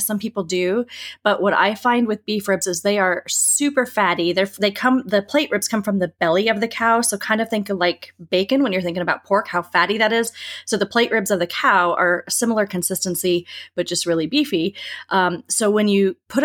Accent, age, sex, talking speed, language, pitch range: American, 30-49, female, 230 wpm, English, 180-220 Hz